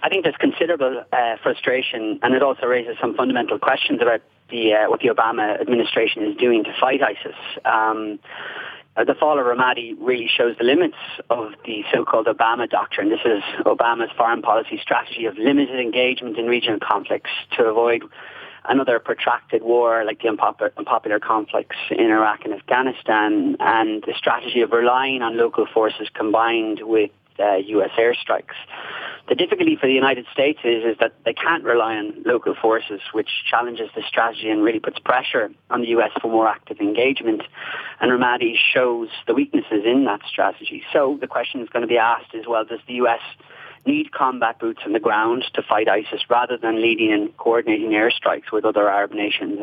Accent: Irish